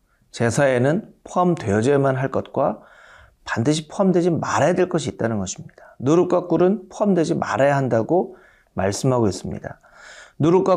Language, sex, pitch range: Korean, male, 120-180 Hz